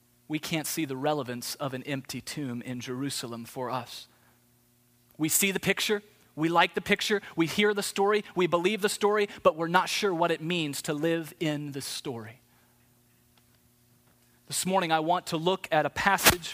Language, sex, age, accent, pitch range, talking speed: English, male, 30-49, American, 125-175 Hz, 180 wpm